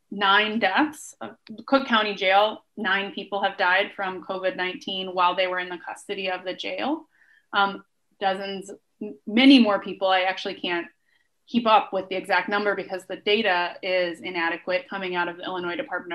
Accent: American